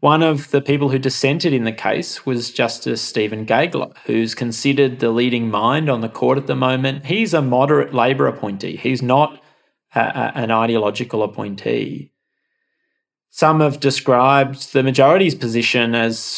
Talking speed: 150 wpm